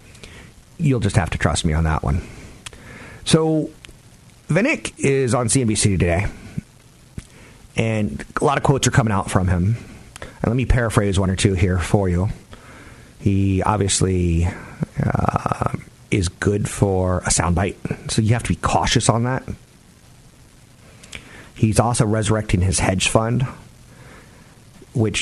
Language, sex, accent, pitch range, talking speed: English, male, American, 100-130 Hz, 140 wpm